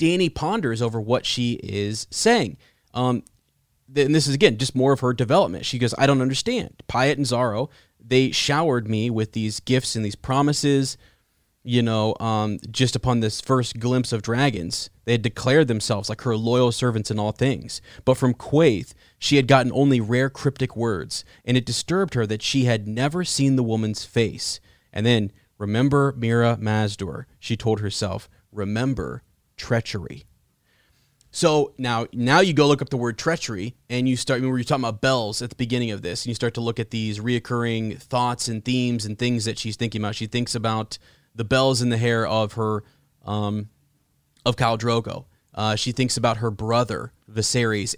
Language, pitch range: English, 110-130 Hz